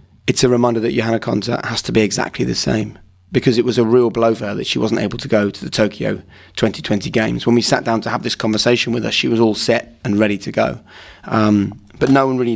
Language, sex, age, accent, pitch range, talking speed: English, male, 30-49, British, 100-115 Hz, 260 wpm